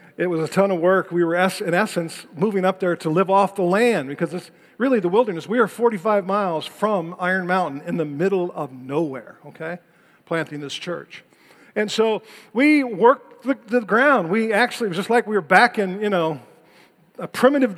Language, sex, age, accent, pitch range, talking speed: English, male, 50-69, American, 165-220 Hz, 200 wpm